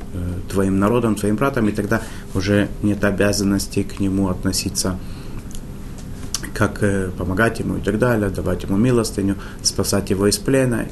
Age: 30-49